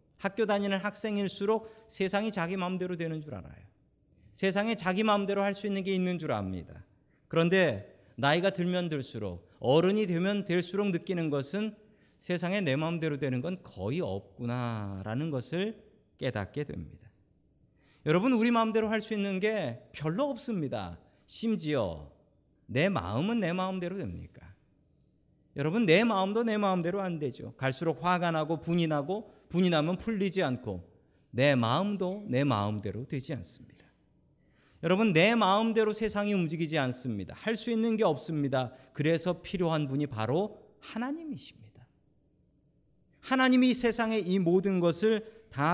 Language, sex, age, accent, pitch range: Korean, male, 40-59, native, 135-205 Hz